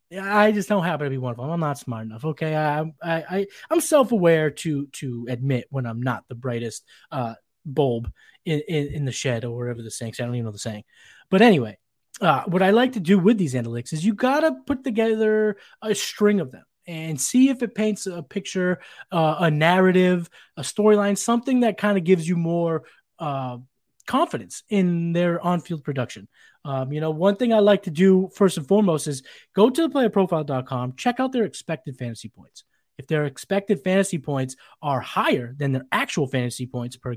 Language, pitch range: English, 135-210 Hz